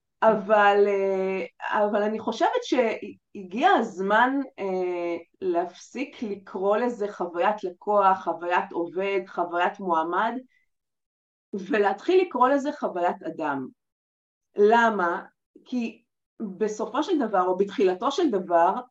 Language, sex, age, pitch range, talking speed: Hebrew, female, 30-49, 195-290 Hz, 90 wpm